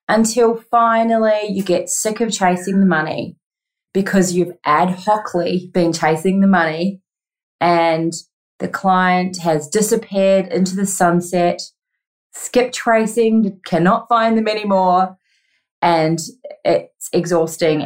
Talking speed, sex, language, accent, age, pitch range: 115 wpm, female, English, Australian, 30-49, 175-220 Hz